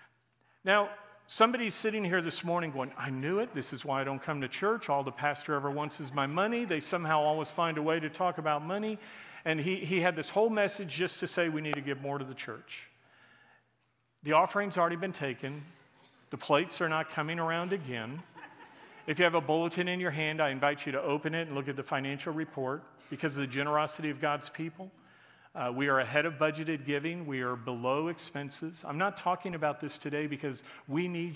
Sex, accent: male, American